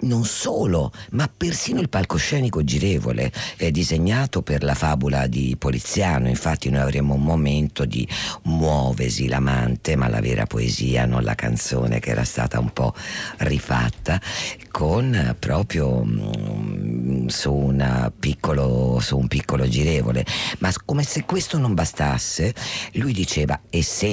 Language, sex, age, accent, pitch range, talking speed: Italian, female, 50-69, native, 65-85 Hz, 130 wpm